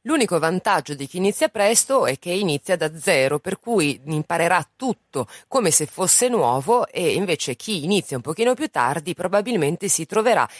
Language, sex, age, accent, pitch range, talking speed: Italian, female, 30-49, native, 140-225 Hz, 170 wpm